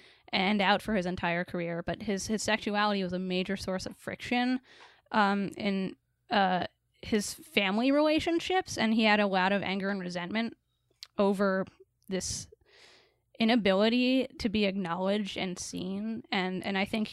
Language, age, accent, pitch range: English, 10-29, American, 185-225 Hz